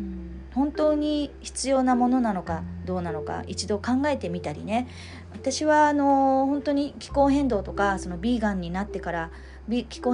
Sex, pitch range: female, 170-255 Hz